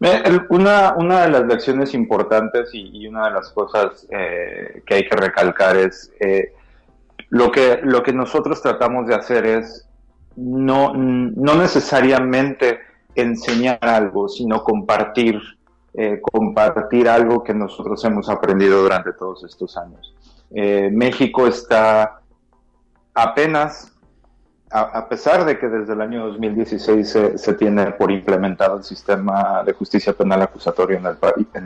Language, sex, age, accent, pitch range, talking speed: Spanish, male, 30-49, Mexican, 105-130 Hz, 135 wpm